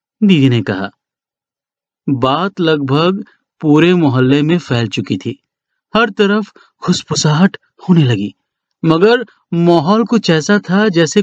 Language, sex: Hindi, male